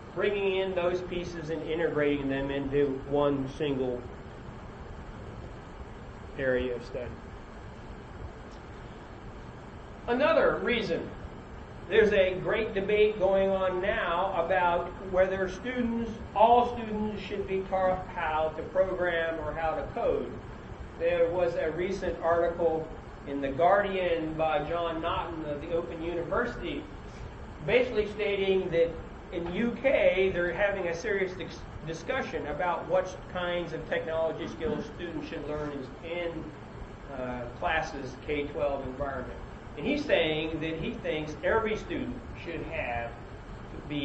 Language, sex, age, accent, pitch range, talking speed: English, male, 40-59, American, 150-195 Hz, 120 wpm